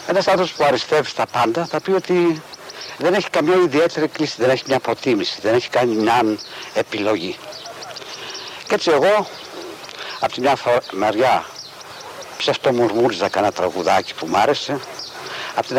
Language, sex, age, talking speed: Greek, male, 60-79, 145 wpm